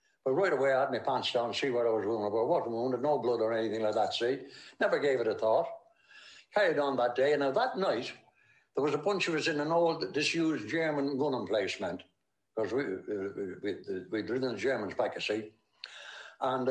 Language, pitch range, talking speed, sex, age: English, 120-165 Hz, 220 wpm, male, 60-79